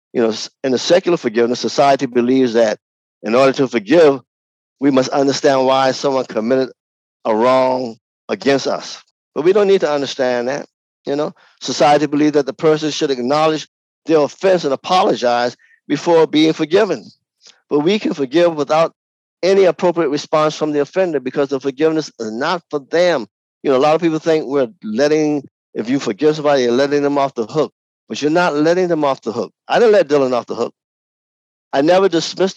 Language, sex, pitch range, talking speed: English, male, 130-160 Hz, 185 wpm